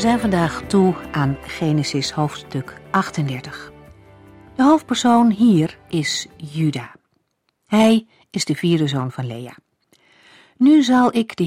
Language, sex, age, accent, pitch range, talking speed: Dutch, female, 50-69, Dutch, 145-195 Hz, 125 wpm